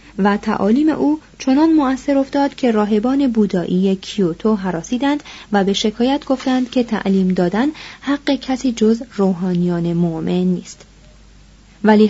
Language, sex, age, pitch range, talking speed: Persian, female, 30-49, 200-265 Hz, 125 wpm